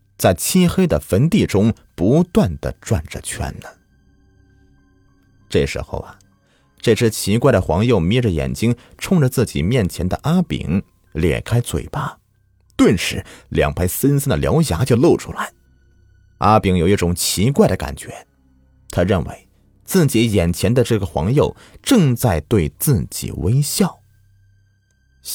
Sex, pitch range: male, 85-120 Hz